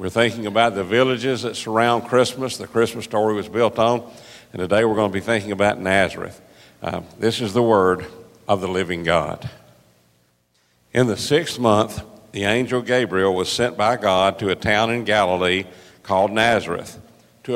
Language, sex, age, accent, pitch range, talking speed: English, male, 50-69, American, 100-125 Hz, 175 wpm